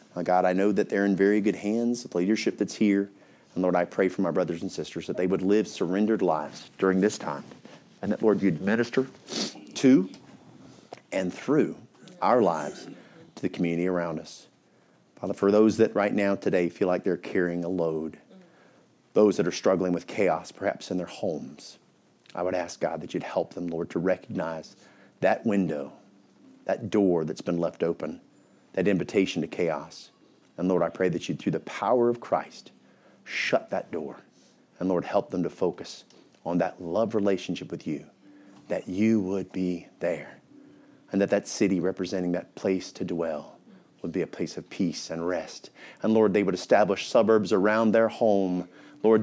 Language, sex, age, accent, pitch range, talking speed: English, male, 40-59, American, 90-110 Hz, 185 wpm